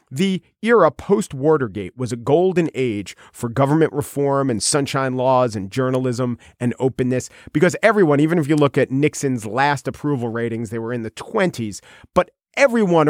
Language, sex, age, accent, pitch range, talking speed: English, male, 40-59, American, 130-180 Hz, 160 wpm